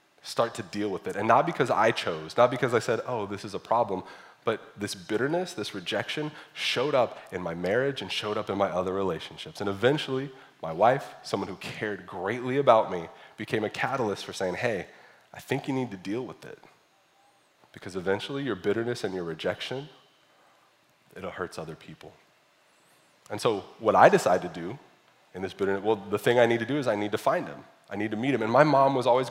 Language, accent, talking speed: English, American, 215 wpm